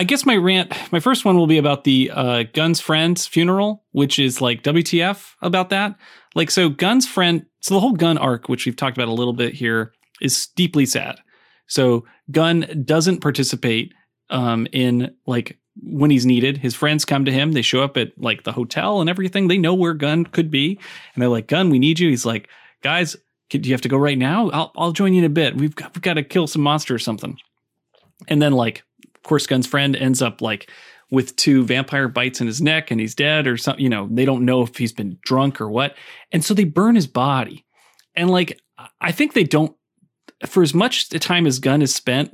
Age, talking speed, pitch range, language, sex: 30-49, 225 wpm, 125-170 Hz, English, male